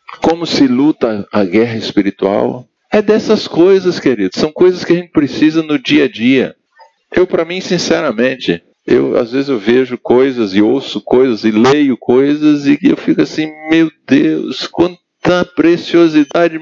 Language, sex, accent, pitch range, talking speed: Portuguese, male, Brazilian, 110-175 Hz, 160 wpm